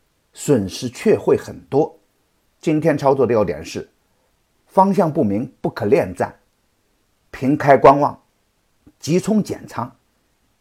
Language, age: Chinese, 50-69